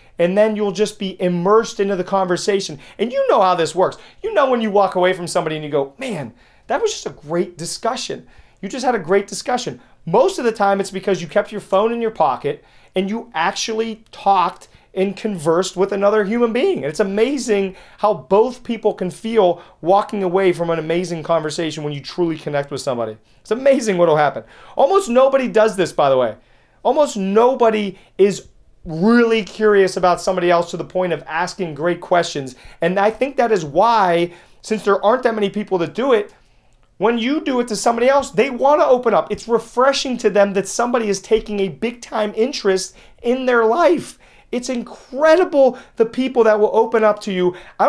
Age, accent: 30-49, American